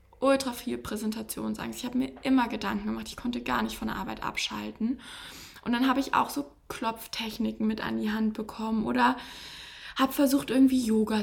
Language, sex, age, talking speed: German, female, 20-39, 180 wpm